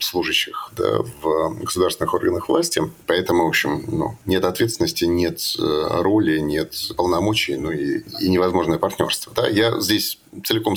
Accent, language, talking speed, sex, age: native, Russian, 140 wpm, male, 30-49